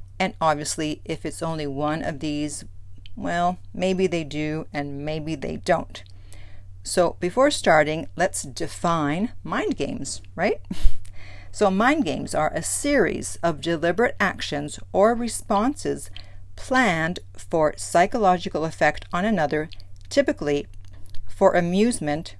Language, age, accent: English, 50-69, American